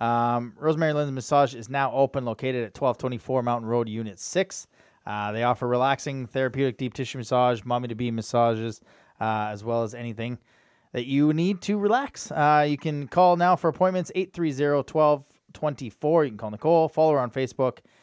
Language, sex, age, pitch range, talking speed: English, male, 20-39, 115-140 Hz, 185 wpm